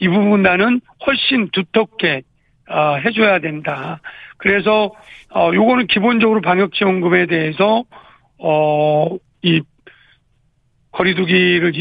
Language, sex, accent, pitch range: Korean, male, native, 160-200 Hz